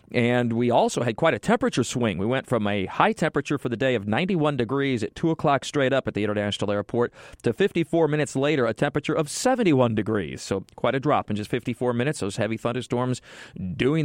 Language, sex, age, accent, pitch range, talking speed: English, male, 40-59, American, 115-145 Hz, 215 wpm